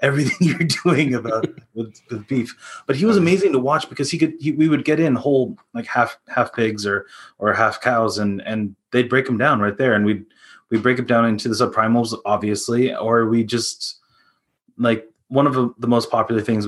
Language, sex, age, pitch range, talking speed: English, male, 20-39, 105-125 Hz, 210 wpm